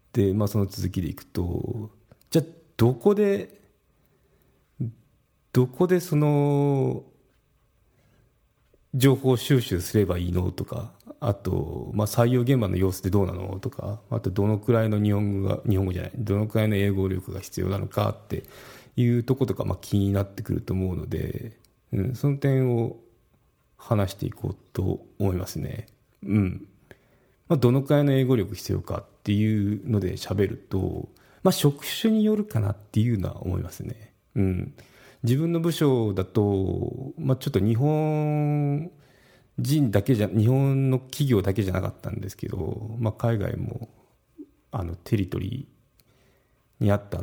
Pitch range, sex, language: 100-130 Hz, male, Japanese